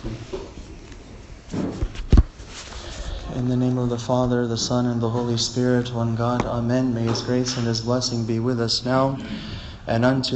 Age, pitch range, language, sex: 30-49, 105-125 Hz, English, male